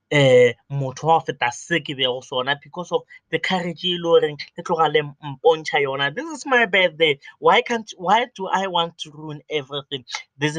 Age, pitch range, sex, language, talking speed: 20-39, 140-200 Hz, male, English, 85 wpm